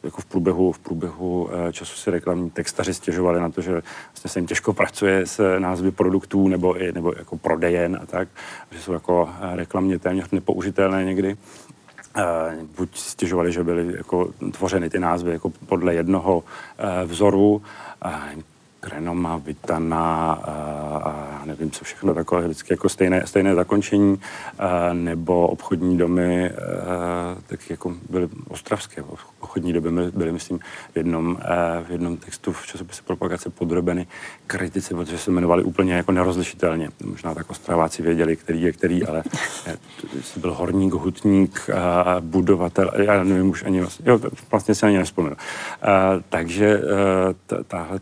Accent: native